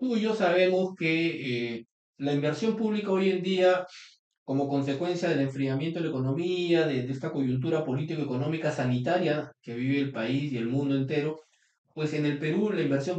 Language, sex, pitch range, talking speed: Spanish, male, 130-180 Hz, 175 wpm